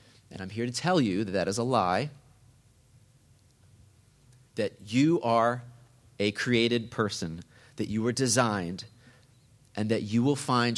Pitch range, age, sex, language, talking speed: 105-125 Hz, 30-49, male, English, 145 wpm